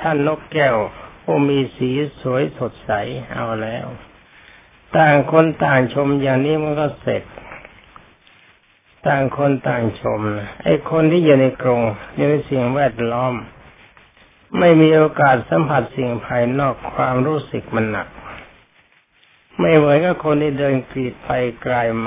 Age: 60-79